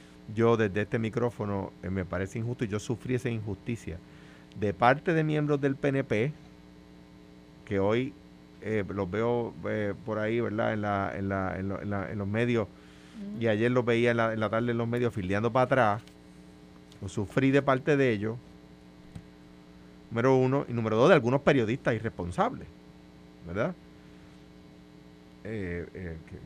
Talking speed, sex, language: 165 wpm, male, Spanish